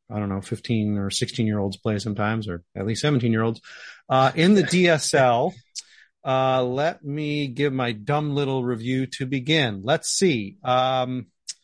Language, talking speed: English, 145 wpm